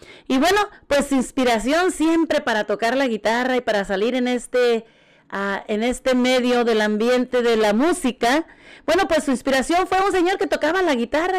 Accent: Mexican